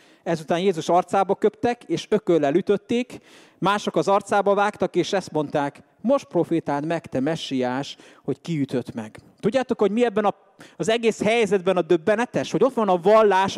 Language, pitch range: English, 170-225 Hz